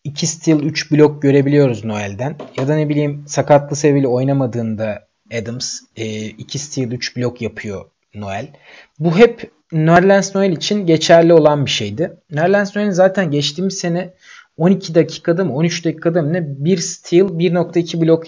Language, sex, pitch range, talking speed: Turkish, male, 125-175 Hz, 150 wpm